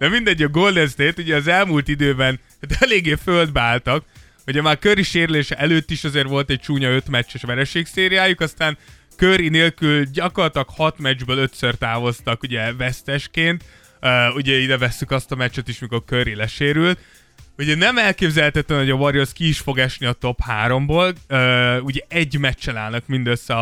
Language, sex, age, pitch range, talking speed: Hungarian, male, 20-39, 125-155 Hz, 170 wpm